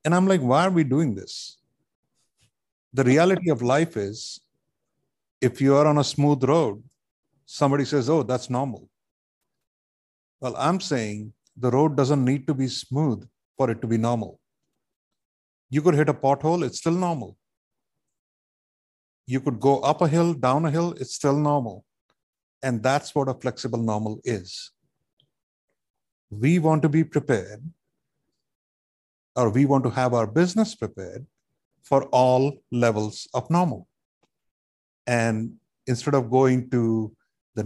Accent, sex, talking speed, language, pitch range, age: Indian, male, 145 wpm, English, 120-155 Hz, 50-69